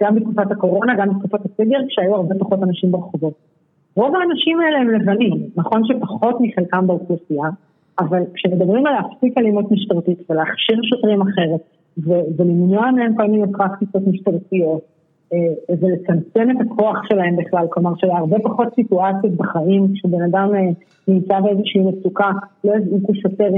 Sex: female